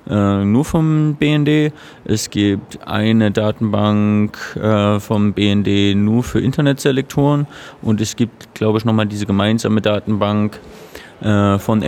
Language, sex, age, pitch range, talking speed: German, male, 30-49, 105-120 Hz, 110 wpm